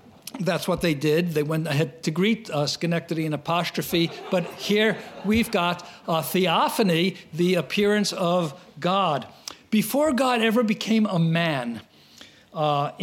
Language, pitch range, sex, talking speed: English, 160-205 Hz, male, 140 wpm